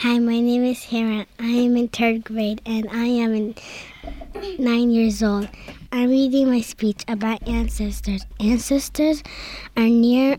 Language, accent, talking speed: English, American, 150 wpm